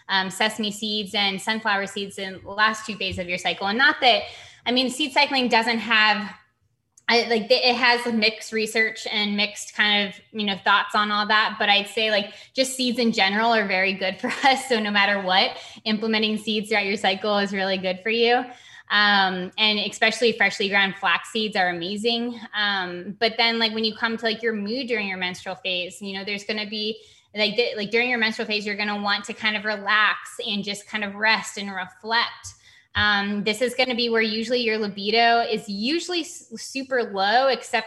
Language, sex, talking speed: English, female, 210 wpm